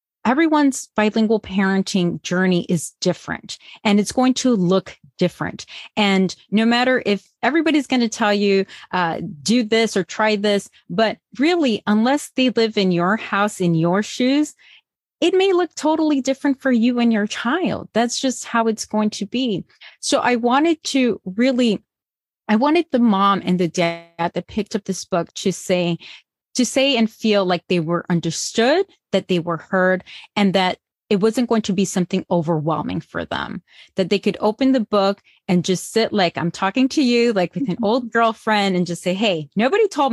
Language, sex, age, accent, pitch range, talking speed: English, female, 30-49, American, 185-240 Hz, 180 wpm